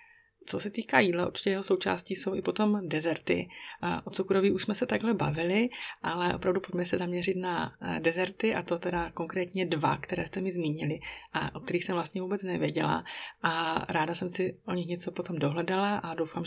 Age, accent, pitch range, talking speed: 30-49, native, 170-190 Hz, 190 wpm